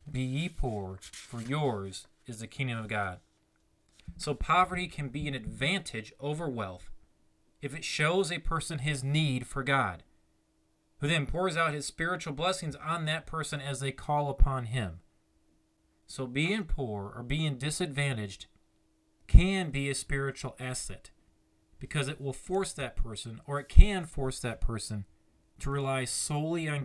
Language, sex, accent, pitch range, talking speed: English, male, American, 105-145 Hz, 155 wpm